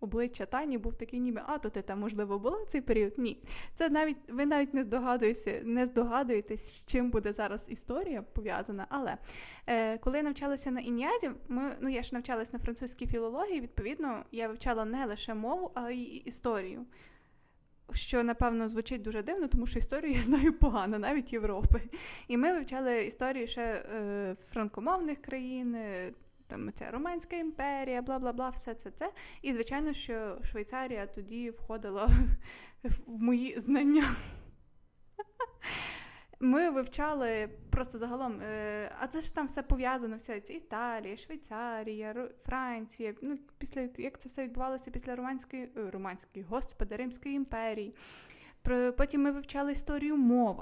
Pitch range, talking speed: 225-275 Hz, 145 wpm